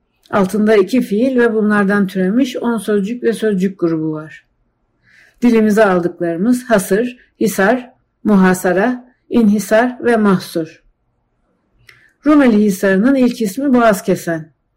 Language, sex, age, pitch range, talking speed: Turkish, female, 60-79, 180-225 Hz, 105 wpm